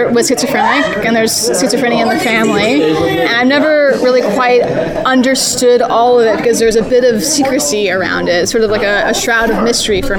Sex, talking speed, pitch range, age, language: female, 200 wpm, 210-240 Hz, 20-39, English